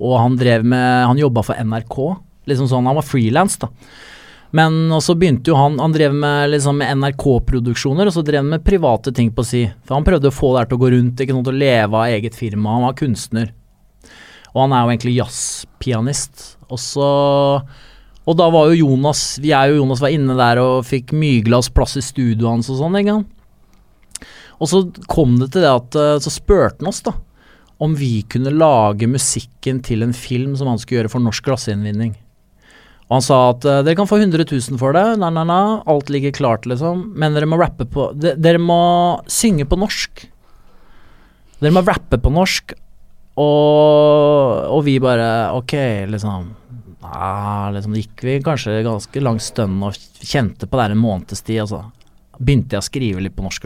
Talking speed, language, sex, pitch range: 185 wpm, English, male, 115-150 Hz